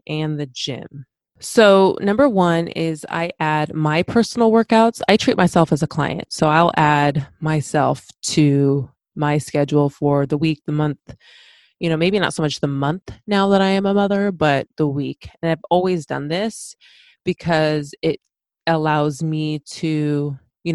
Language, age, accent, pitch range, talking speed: English, 20-39, American, 145-180 Hz, 170 wpm